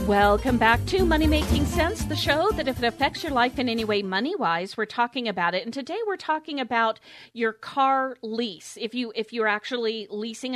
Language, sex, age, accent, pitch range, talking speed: English, female, 40-59, American, 205-255 Hz, 205 wpm